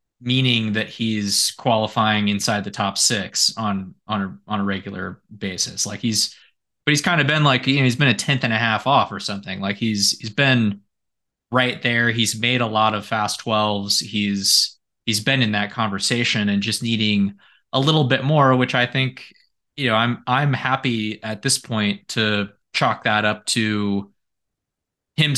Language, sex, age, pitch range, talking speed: English, male, 20-39, 100-120 Hz, 180 wpm